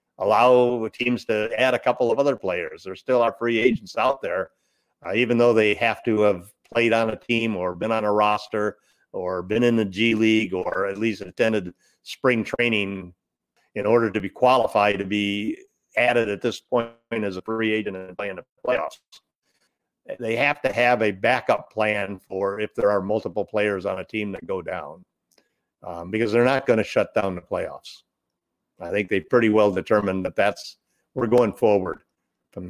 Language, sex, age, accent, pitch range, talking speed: English, male, 50-69, American, 105-120 Hz, 190 wpm